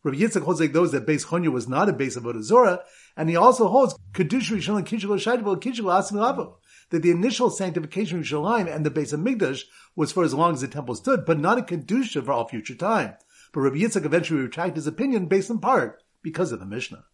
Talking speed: 205 wpm